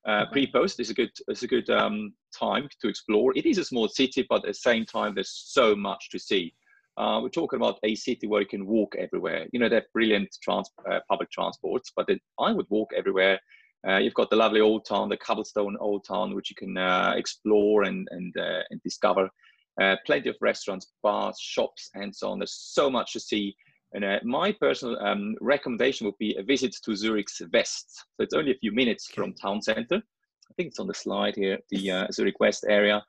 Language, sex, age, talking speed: English, male, 30-49, 225 wpm